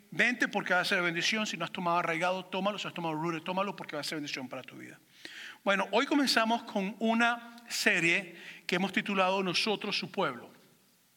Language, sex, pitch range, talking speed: English, male, 165-205 Hz, 205 wpm